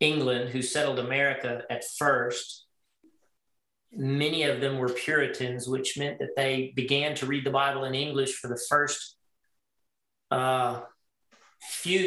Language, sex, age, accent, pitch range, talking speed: English, male, 40-59, American, 130-145 Hz, 135 wpm